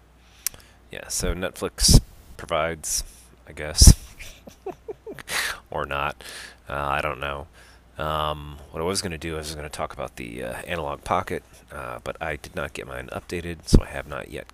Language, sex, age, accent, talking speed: English, male, 30-49, American, 160 wpm